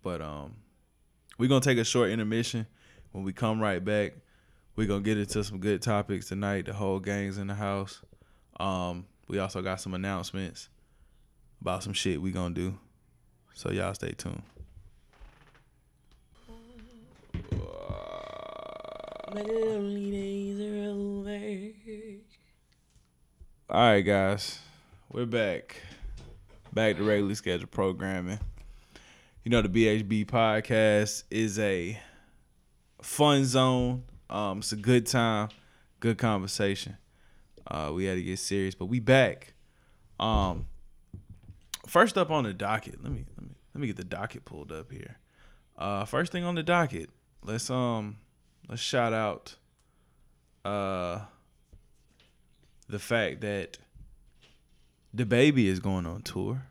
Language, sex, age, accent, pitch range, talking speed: English, male, 20-39, American, 95-125 Hz, 125 wpm